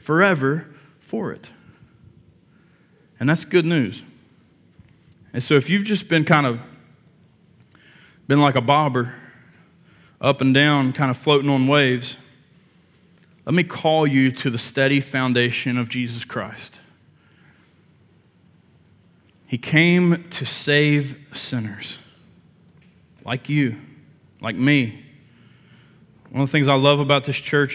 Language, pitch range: English, 125-165 Hz